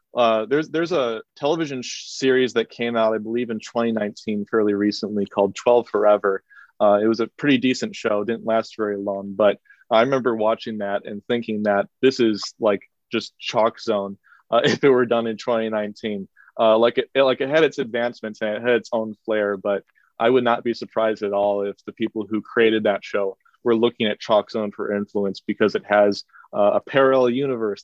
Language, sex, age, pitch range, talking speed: English, male, 30-49, 105-120 Hz, 205 wpm